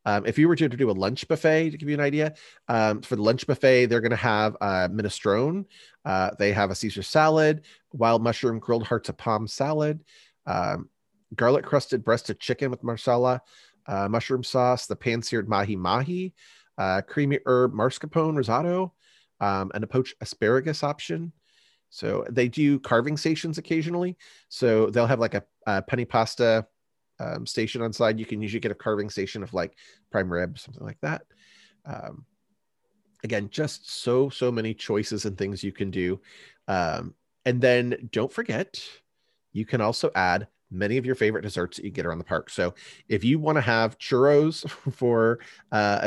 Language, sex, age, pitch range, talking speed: English, male, 30-49, 105-145 Hz, 180 wpm